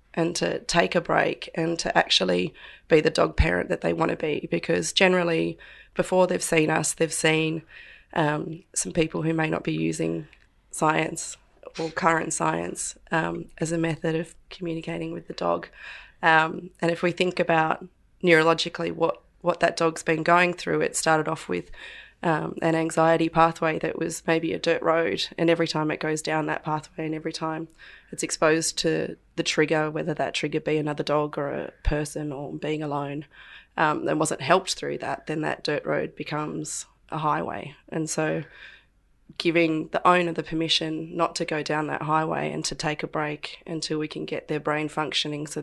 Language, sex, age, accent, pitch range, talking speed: English, female, 20-39, Australian, 150-165 Hz, 185 wpm